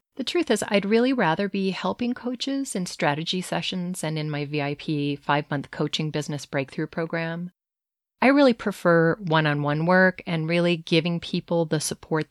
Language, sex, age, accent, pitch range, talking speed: English, female, 30-49, American, 155-215 Hz, 155 wpm